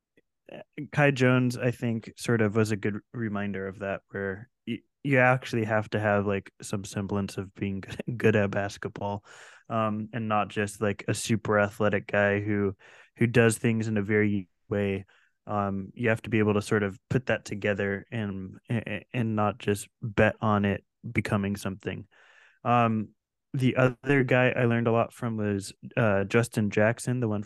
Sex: male